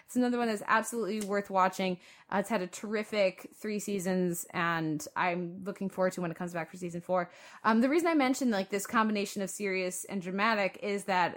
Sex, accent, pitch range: female, American, 180-210 Hz